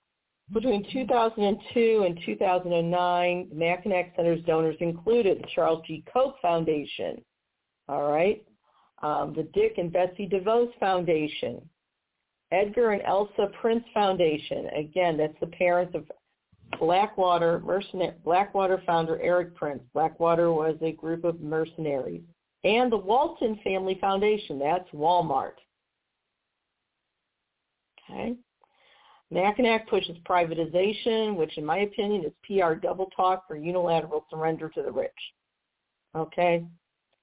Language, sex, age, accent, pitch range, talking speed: English, female, 50-69, American, 165-200 Hz, 115 wpm